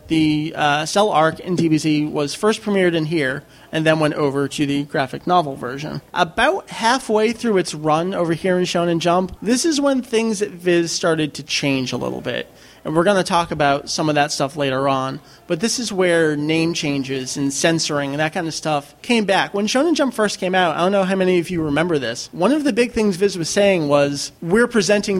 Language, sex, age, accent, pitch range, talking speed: English, male, 30-49, American, 150-200 Hz, 225 wpm